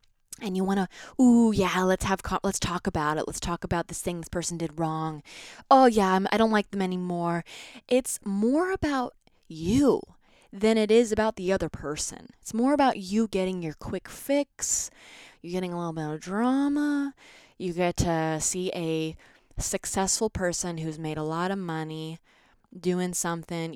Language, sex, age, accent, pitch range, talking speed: English, female, 20-39, American, 160-215 Hz, 175 wpm